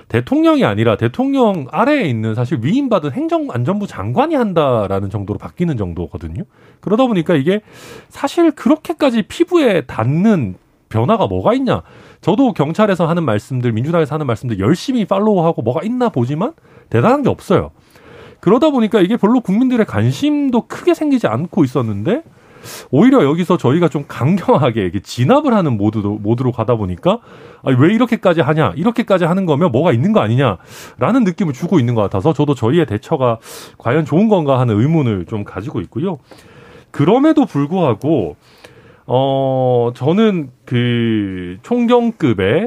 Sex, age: male, 40-59